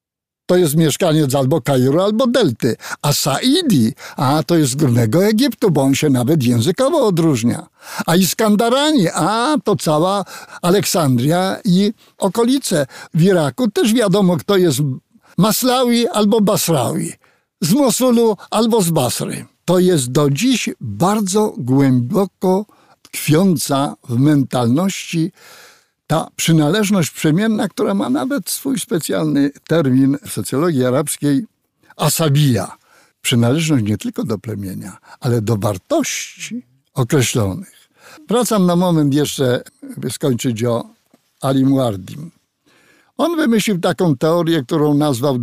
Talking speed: 120 wpm